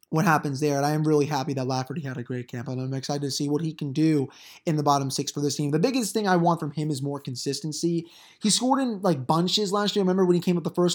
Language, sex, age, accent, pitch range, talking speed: English, male, 20-39, American, 150-175 Hz, 300 wpm